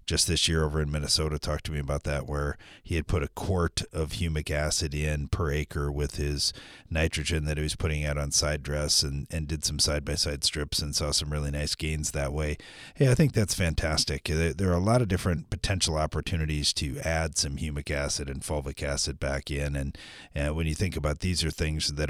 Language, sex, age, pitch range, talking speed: English, male, 40-59, 75-85 Hz, 220 wpm